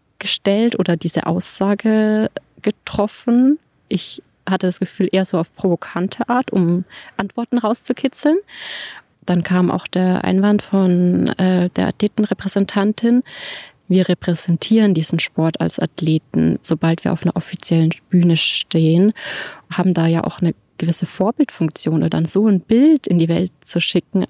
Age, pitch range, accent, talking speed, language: 20-39, 170-215 Hz, German, 140 wpm, German